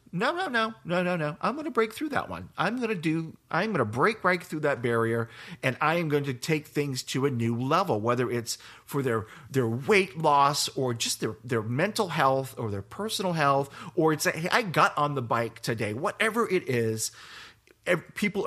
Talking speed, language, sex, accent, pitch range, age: 220 wpm, English, male, American, 115-155 Hz, 40-59